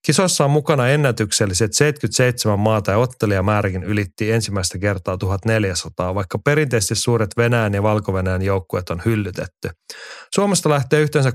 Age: 30-49